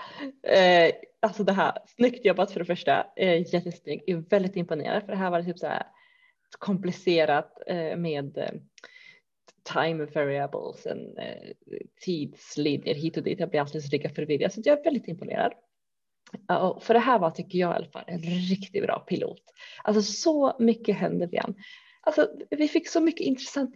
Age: 30-49